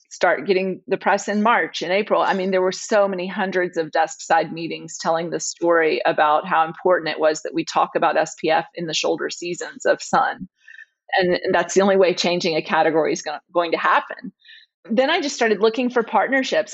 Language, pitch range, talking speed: English, 180-215 Hz, 210 wpm